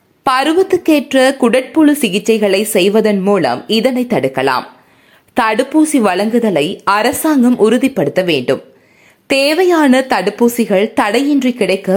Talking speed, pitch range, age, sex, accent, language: 80 wpm, 205-280 Hz, 20-39, female, native, Tamil